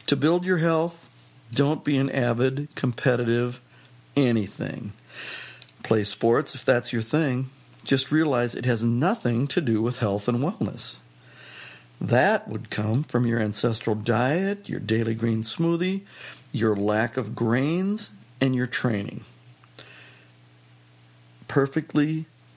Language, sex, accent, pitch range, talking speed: English, male, American, 110-135 Hz, 120 wpm